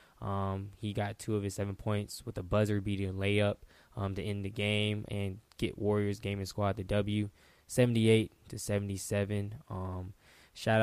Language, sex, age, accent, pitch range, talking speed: English, male, 10-29, American, 100-110 Hz, 165 wpm